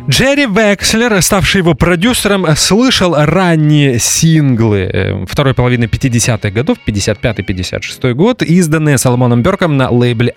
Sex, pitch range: male, 110-160 Hz